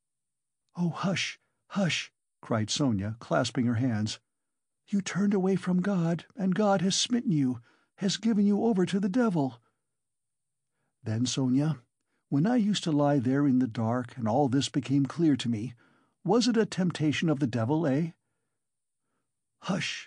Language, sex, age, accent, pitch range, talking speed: English, male, 60-79, American, 125-180 Hz, 155 wpm